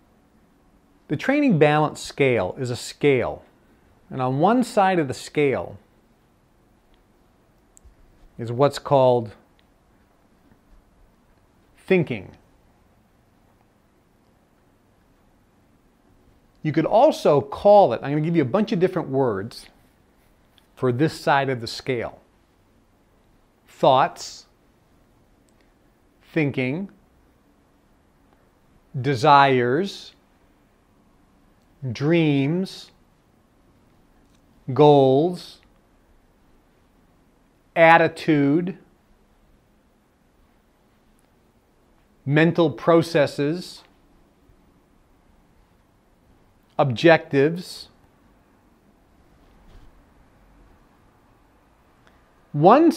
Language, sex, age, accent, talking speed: English, male, 40-59, American, 55 wpm